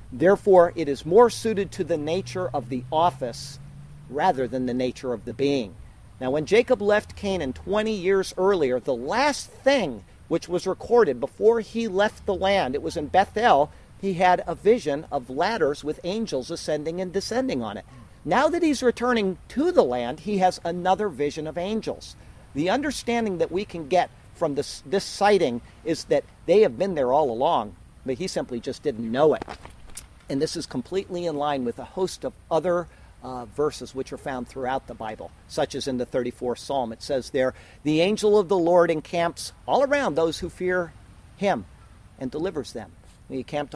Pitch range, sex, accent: 135-195 Hz, male, American